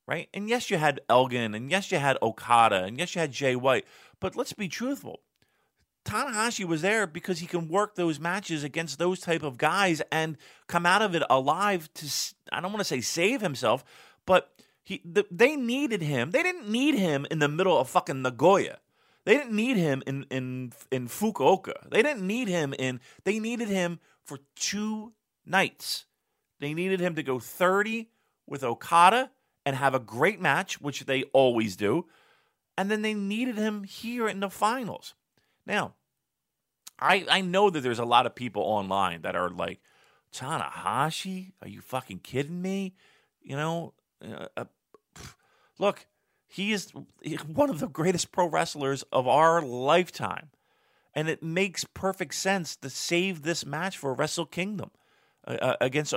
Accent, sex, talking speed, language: American, male, 170 wpm, English